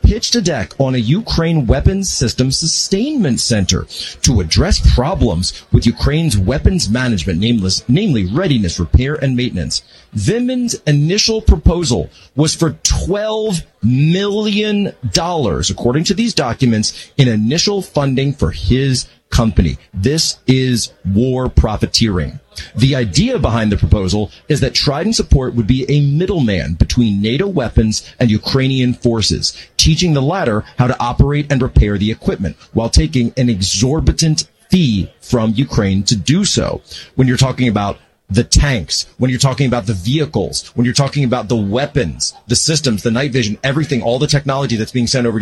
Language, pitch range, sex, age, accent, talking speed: English, 110-150 Hz, male, 40-59, American, 150 wpm